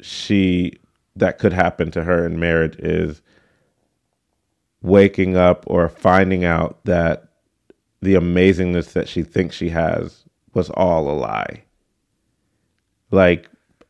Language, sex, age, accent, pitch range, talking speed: English, male, 30-49, American, 85-95 Hz, 115 wpm